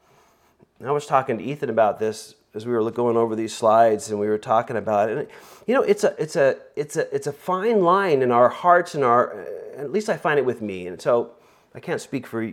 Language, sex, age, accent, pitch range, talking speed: English, male, 40-59, American, 130-195 Hz, 240 wpm